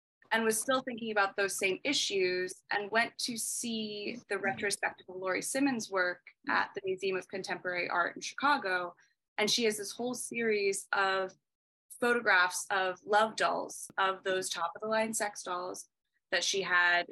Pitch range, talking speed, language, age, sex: 185-215 Hz, 170 wpm, English, 20-39, female